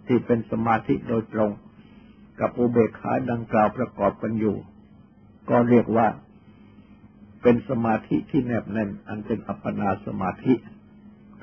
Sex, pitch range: male, 105-120 Hz